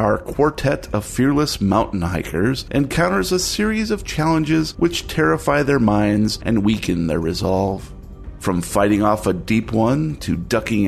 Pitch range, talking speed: 95-145 Hz, 150 wpm